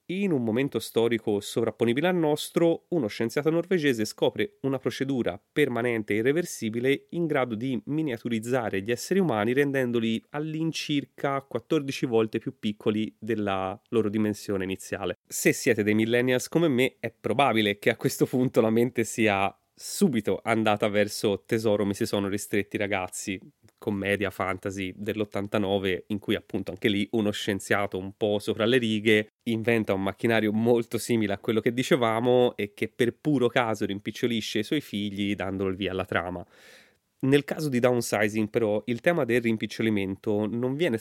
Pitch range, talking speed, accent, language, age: 105-125 Hz, 155 wpm, native, Italian, 30-49